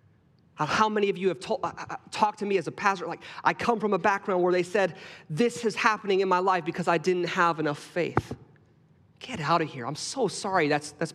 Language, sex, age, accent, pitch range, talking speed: English, male, 30-49, American, 150-195 Hz, 220 wpm